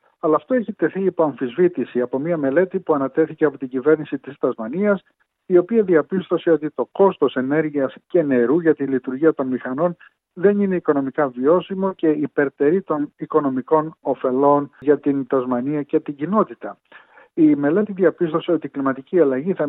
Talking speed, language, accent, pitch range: 160 wpm, Greek, native, 135-175 Hz